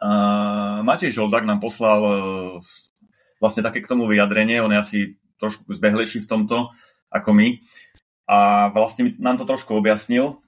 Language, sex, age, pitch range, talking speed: Slovak, male, 30-49, 100-115 Hz, 155 wpm